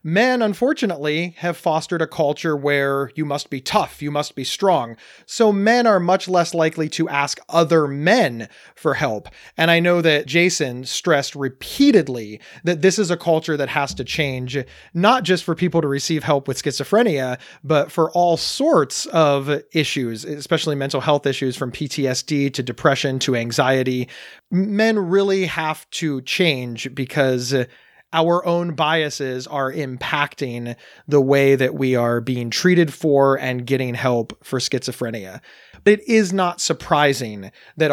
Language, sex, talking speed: English, male, 155 wpm